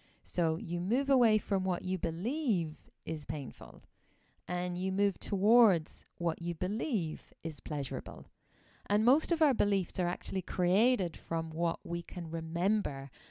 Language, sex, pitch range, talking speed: English, female, 165-215 Hz, 145 wpm